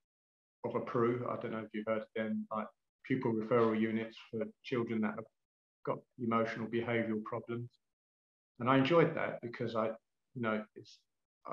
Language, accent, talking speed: English, British, 165 wpm